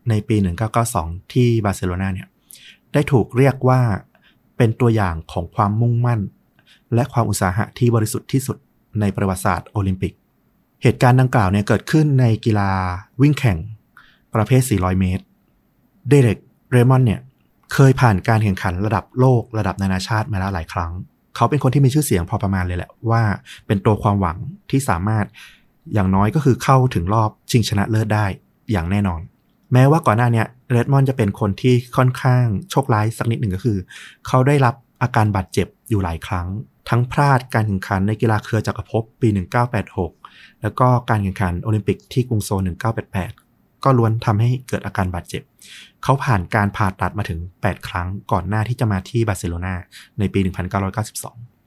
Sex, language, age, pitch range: male, Thai, 30-49, 100-125 Hz